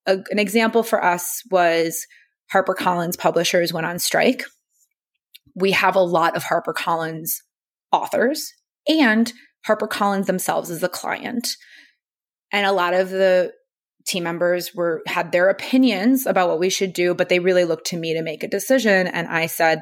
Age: 20-39